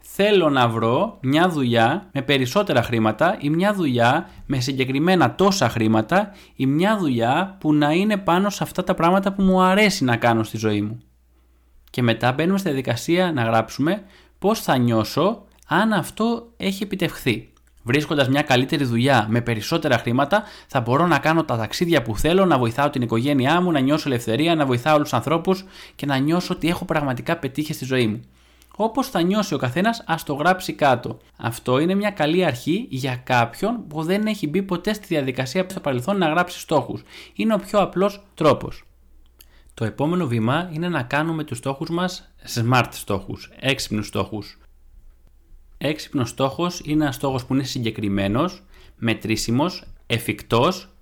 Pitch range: 115-175 Hz